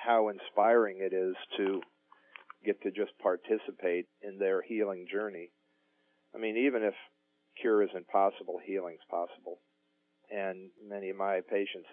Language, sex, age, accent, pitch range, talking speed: English, male, 50-69, American, 90-115 Hz, 135 wpm